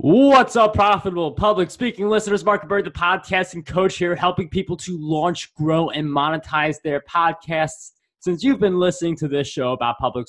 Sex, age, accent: male, 20-39, American